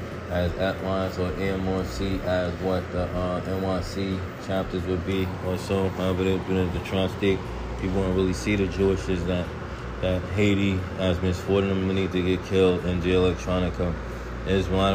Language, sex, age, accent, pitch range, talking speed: English, male, 20-39, American, 90-95 Hz, 175 wpm